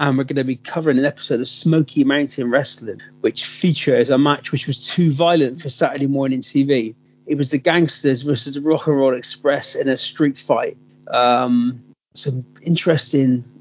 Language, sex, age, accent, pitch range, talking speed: English, male, 40-59, British, 130-165 Hz, 180 wpm